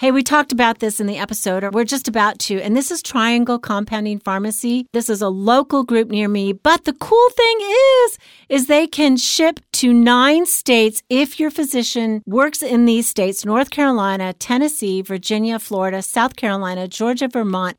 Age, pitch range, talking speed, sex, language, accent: 40-59, 205-260 Hz, 180 wpm, female, English, American